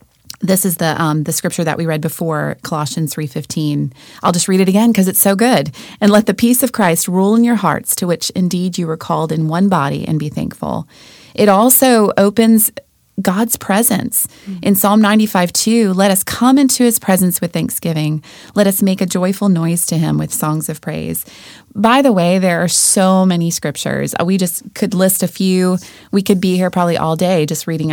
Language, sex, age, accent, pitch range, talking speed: English, female, 30-49, American, 165-210 Hz, 205 wpm